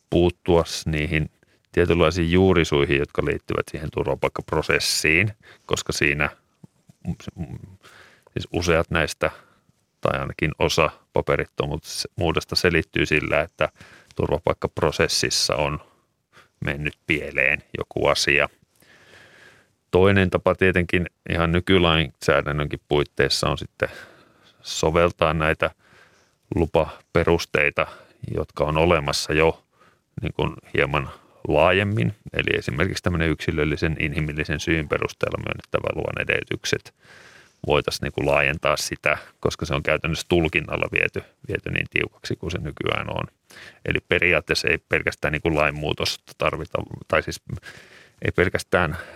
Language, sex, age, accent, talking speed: Finnish, male, 30-49, native, 105 wpm